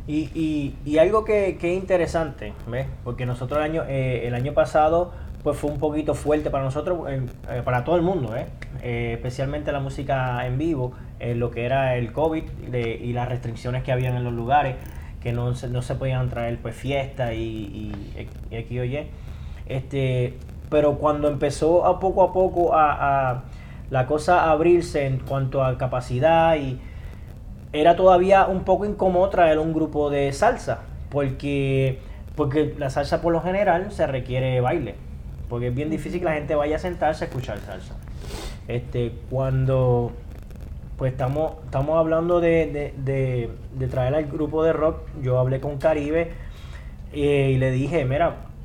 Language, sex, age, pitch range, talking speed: Spanish, male, 20-39, 125-155 Hz, 175 wpm